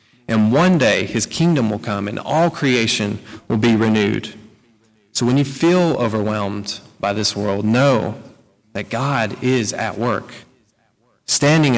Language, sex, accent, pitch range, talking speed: English, male, American, 110-125 Hz, 145 wpm